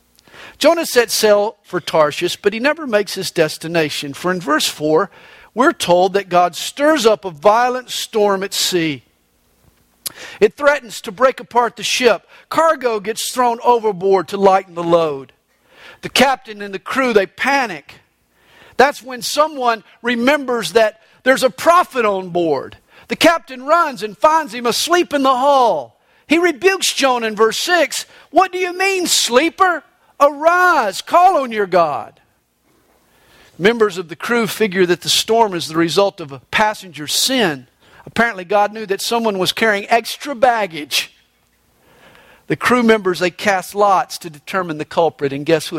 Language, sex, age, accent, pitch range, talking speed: English, male, 50-69, American, 175-265 Hz, 160 wpm